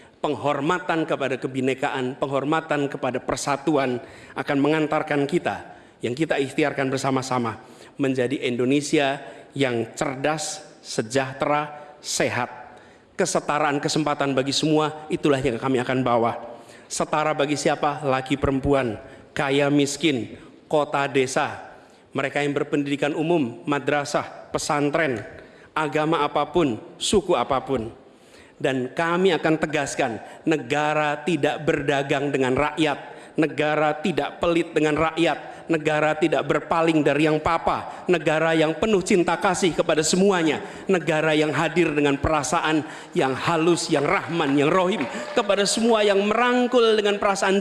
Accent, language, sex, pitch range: native, Indonesian, male, 140-175 Hz